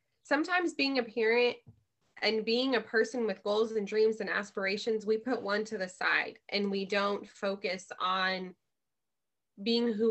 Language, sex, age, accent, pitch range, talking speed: English, female, 20-39, American, 200-245 Hz, 160 wpm